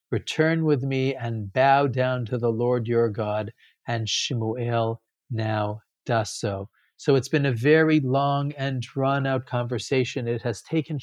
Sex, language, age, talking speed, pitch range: male, English, 50-69, 150 wpm, 115-140 Hz